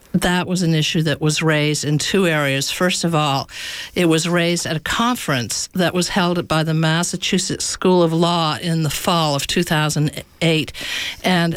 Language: English